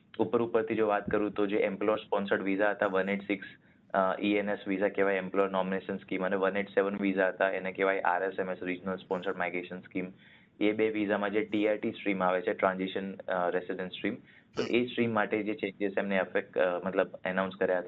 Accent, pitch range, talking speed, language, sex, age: native, 90-100 Hz, 185 wpm, Gujarati, male, 20-39